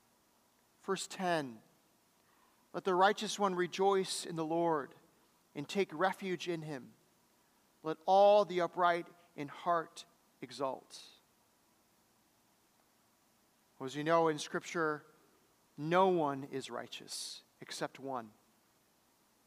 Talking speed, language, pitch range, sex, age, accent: 100 wpm, English, 165-205 Hz, male, 40-59, American